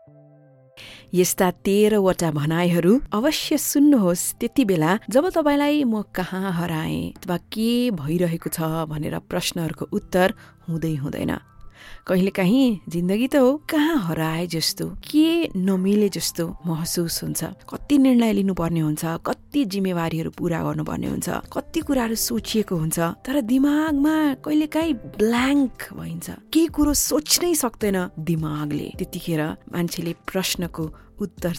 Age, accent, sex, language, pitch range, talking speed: 30-49, Indian, female, English, 160-230 Hz, 125 wpm